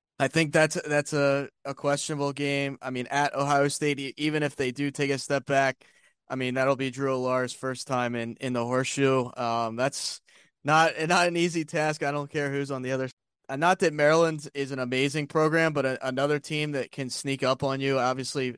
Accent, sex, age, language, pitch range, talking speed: American, male, 20-39, English, 125-145 Hz, 215 wpm